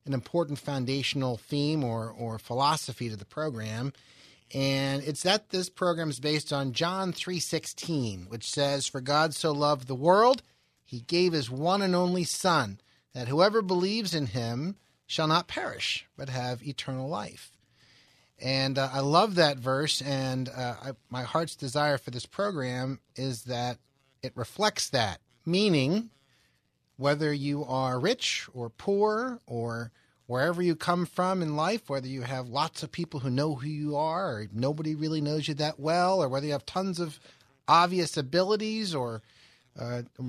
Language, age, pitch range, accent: English, 30-49, 130-170 Hz, American